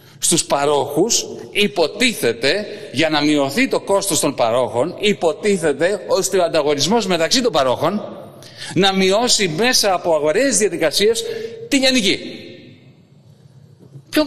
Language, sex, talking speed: Greek, male, 110 wpm